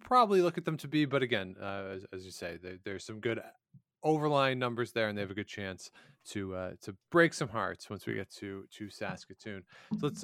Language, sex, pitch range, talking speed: English, male, 105-140 Hz, 235 wpm